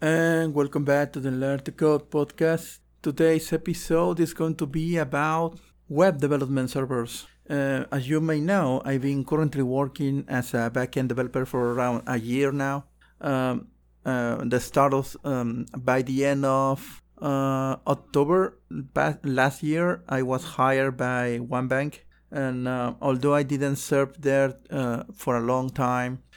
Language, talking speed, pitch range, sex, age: English, 155 wpm, 130-145 Hz, male, 50-69